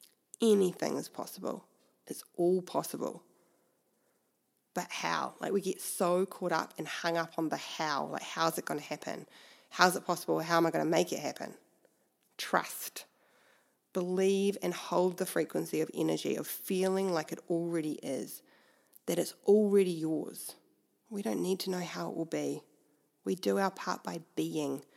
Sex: female